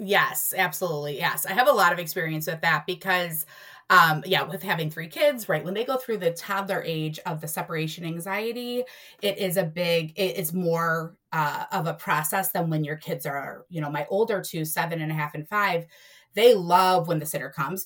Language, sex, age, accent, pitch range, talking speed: English, female, 20-39, American, 160-195 Hz, 210 wpm